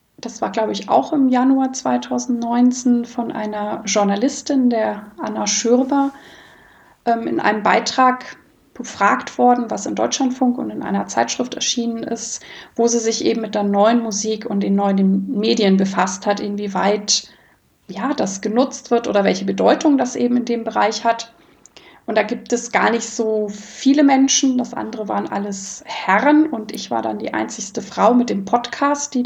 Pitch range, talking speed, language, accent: 210-245 Hz, 165 wpm, German, German